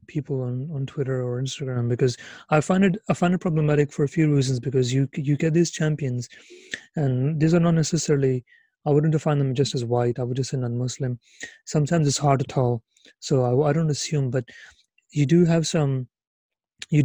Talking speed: 200 wpm